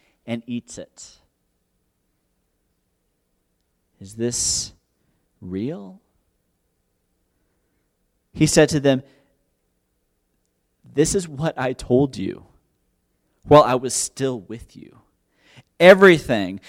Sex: male